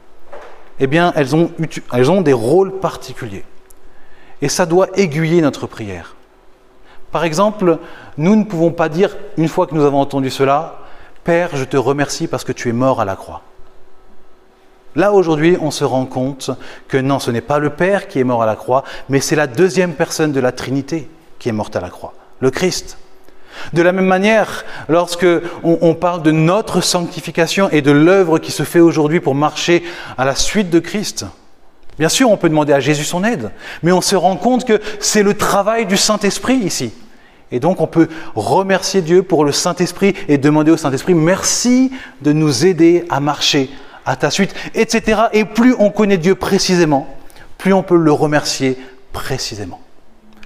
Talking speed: 185 wpm